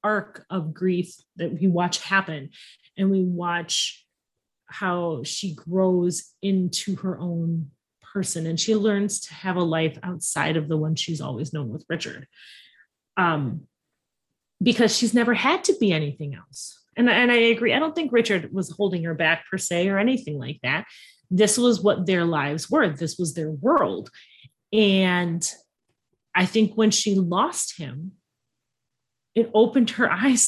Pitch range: 175-230 Hz